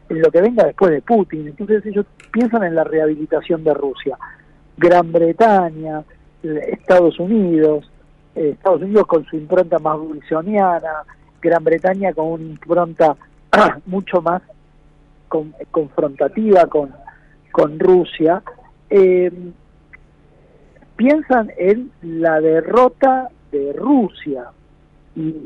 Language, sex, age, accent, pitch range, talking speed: Spanish, male, 50-69, Argentinian, 155-205 Hz, 110 wpm